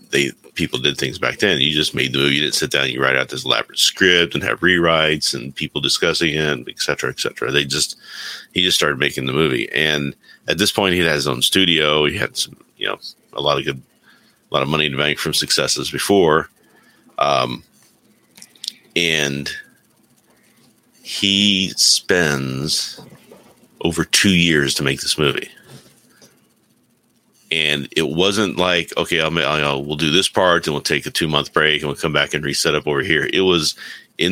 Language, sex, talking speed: English, male, 195 wpm